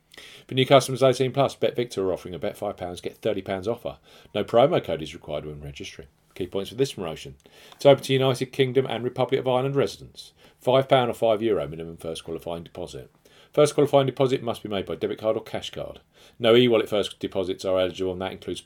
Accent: British